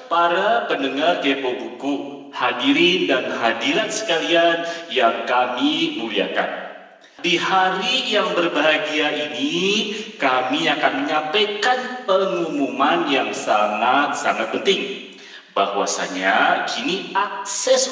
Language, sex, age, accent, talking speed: Indonesian, male, 40-59, native, 85 wpm